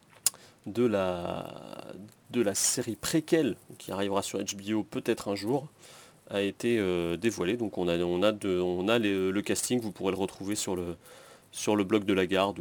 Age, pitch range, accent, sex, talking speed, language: 30-49, 90-110 Hz, French, male, 190 wpm, French